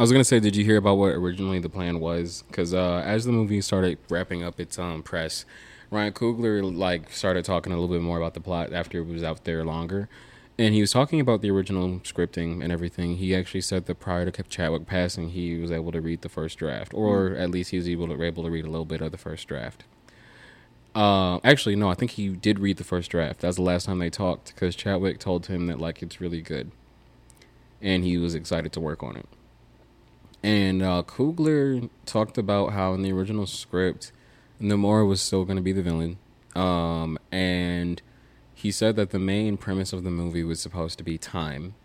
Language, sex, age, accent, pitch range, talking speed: English, male, 20-39, American, 85-100 Hz, 220 wpm